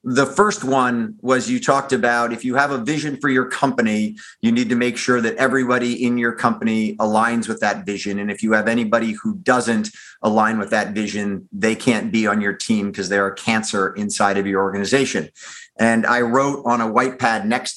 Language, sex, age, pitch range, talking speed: English, male, 50-69, 105-125 Hz, 210 wpm